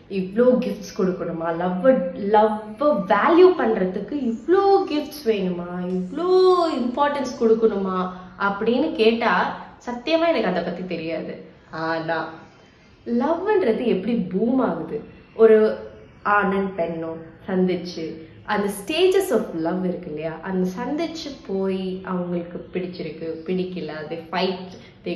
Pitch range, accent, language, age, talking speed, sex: 175-270 Hz, native, Tamil, 20-39, 100 wpm, female